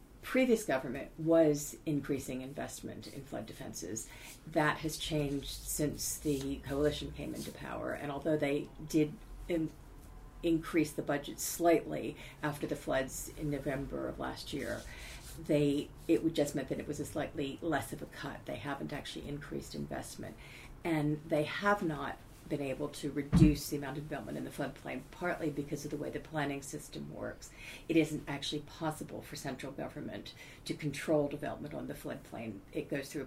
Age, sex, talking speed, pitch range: 50-69, female, 170 wpm, 140-155 Hz